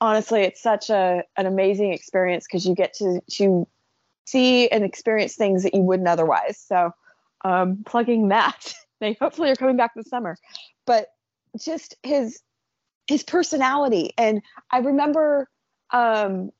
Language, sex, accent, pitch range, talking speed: English, female, American, 190-235 Hz, 145 wpm